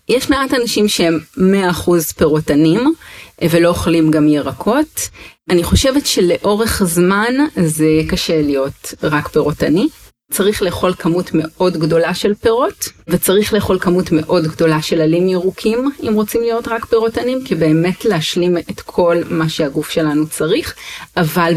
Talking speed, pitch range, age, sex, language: 135 wpm, 160-200 Hz, 30-49, female, Hebrew